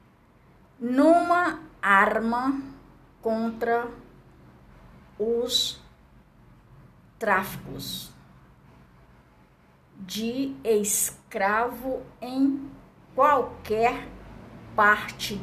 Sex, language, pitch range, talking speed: female, Portuguese, 190-270 Hz, 40 wpm